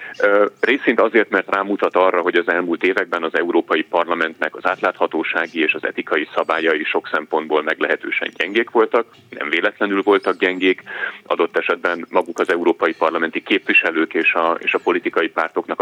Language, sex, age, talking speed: Hungarian, male, 30-49, 150 wpm